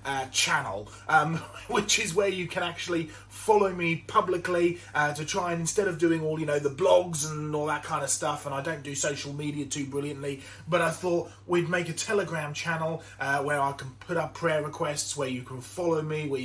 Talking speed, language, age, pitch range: 220 wpm, English, 30-49, 135-175 Hz